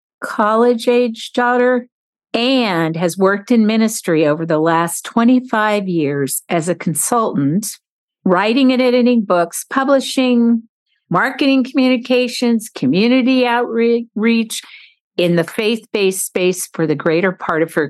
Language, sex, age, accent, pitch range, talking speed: English, female, 50-69, American, 165-245 Hz, 115 wpm